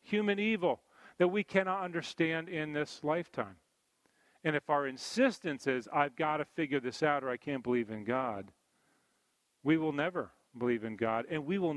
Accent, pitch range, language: American, 130-190 Hz, English